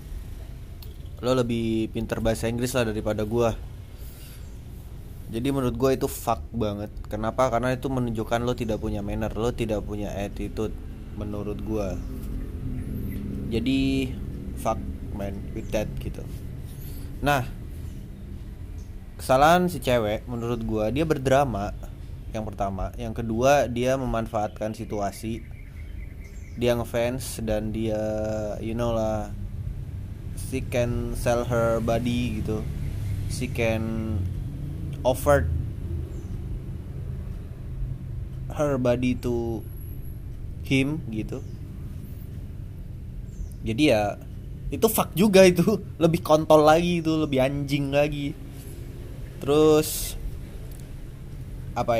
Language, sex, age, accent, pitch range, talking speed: Indonesian, male, 20-39, native, 100-125 Hz, 100 wpm